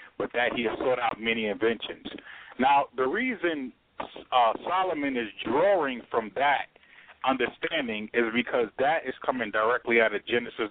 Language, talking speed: English, 150 wpm